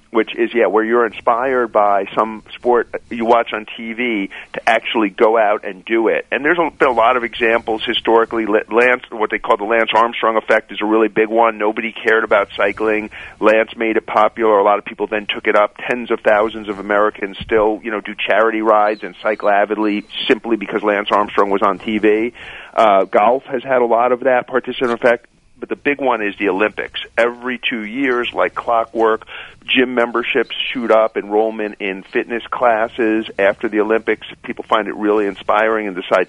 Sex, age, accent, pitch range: male, 40-59, American, 105-115 Hz